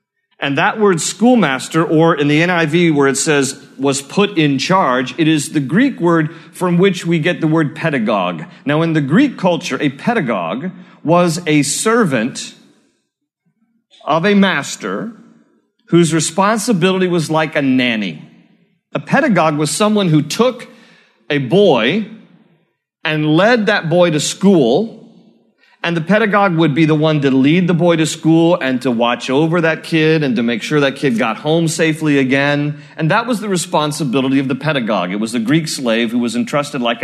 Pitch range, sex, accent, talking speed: 145-200 Hz, male, American, 170 wpm